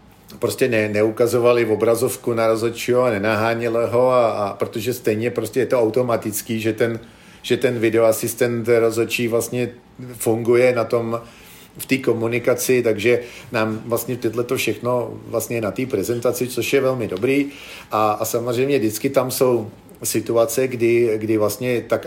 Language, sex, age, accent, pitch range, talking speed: Czech, male, 40-59, native, 115-130 Hz, 155 wpm